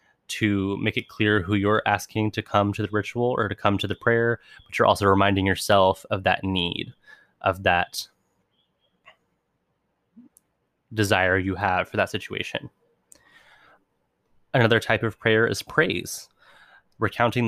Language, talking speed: English, 140 wpm